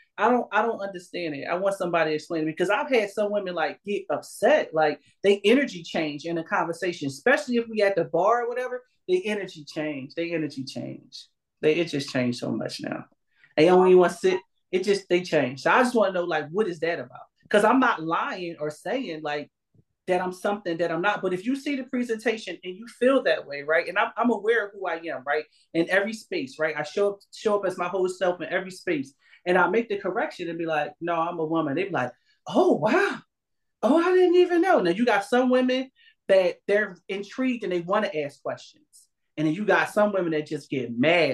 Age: 30-49